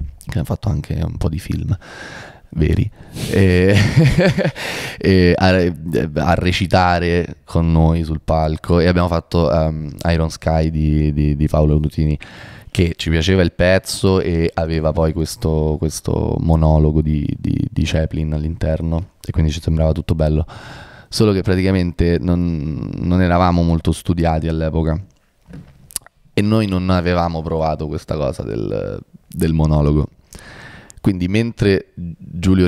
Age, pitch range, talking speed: 20-39, 80-105 Hz, 135 wpm